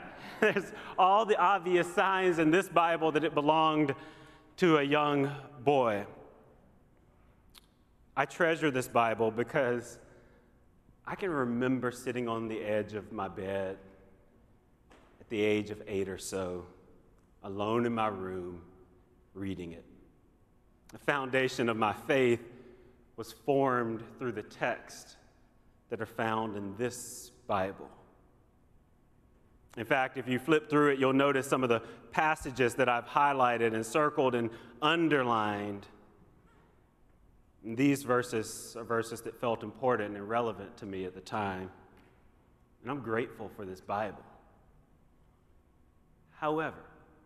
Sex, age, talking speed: male, 30-49, 125 wpm